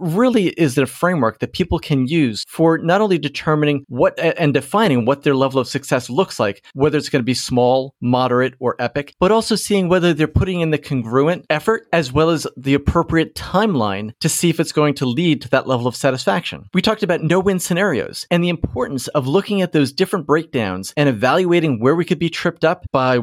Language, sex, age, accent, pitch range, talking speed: English, male, 40-59, American, 135-180 Hz, 210 wpm